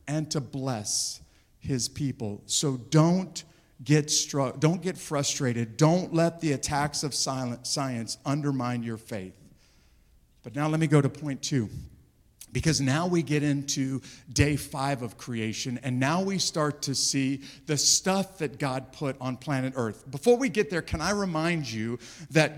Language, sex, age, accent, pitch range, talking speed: English, male, 50-69, American, 130-175 Hz, 160 wpm